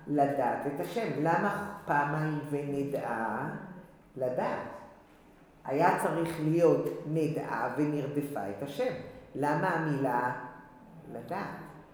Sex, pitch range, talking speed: female, 135-165 Hz, 90 wpm